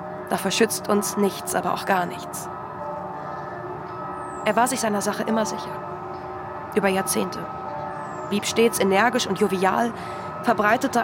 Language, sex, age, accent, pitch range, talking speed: German, female, 20-39, German, 185-225 Hz, 125 wpm